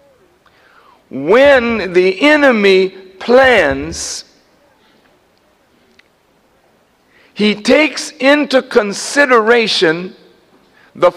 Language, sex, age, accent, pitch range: English, male, 50-69, American, 215-290 Hz